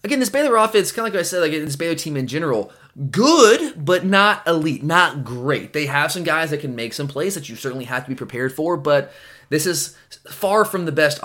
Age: 20-39